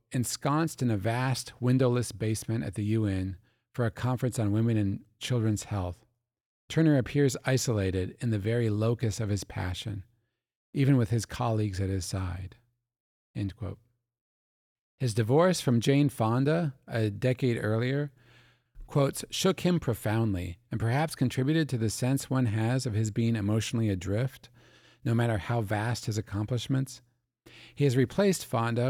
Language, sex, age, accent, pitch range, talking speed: English, male, 40-59, American, 110-130 Hz, 145 wpm